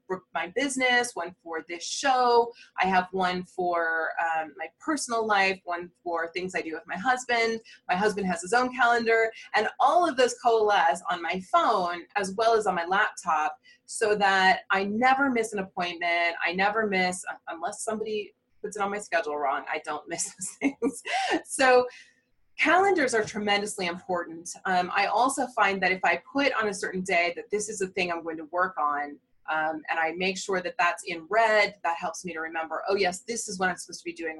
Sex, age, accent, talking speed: female, 20-39, American, 205 wpm